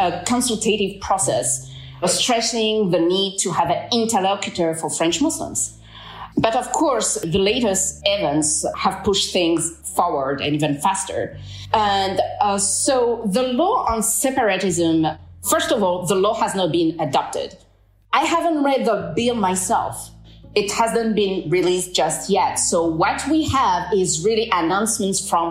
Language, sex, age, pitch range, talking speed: English, female, 30-49, 165-220 Hz, 150 wpm